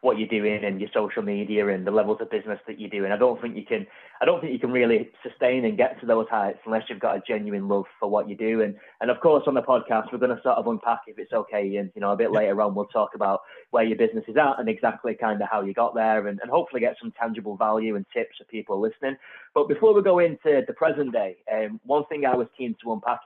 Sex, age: male, 20-39